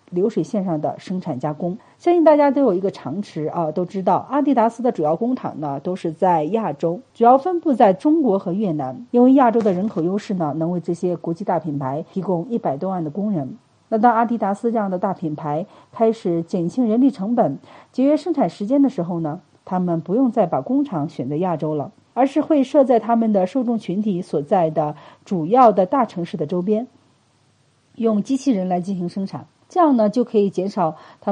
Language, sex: Chinese, female